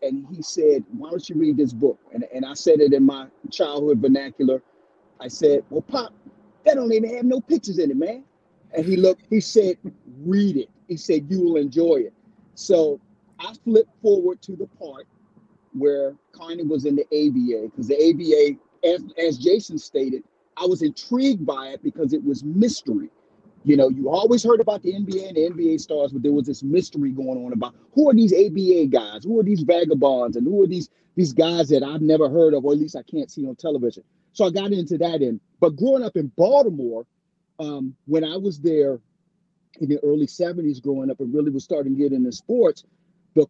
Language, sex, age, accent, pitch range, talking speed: English, male, 40-59, American, 145-210 Hz, 210 wpm